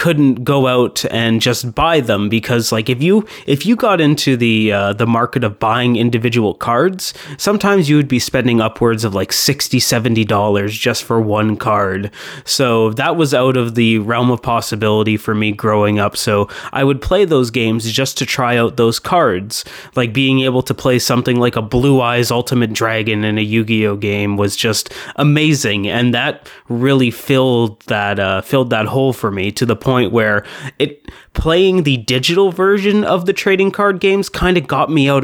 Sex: male